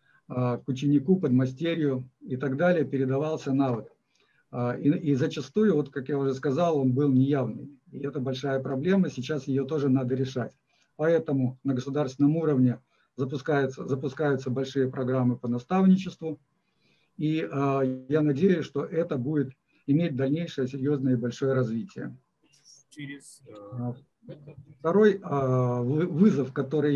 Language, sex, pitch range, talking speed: Russian, male, 130-150 Hz, 120 wpm